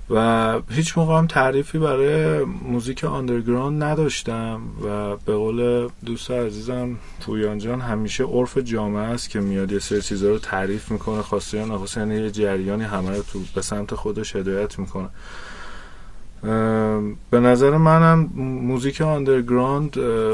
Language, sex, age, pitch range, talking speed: Persian, male, 30-49, 100-125 Hz, 125 wpm